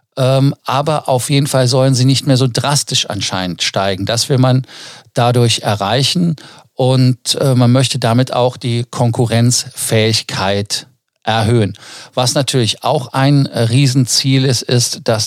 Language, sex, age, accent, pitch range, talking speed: German, male, 50-69, German, 110-130 Hz, 130 wpm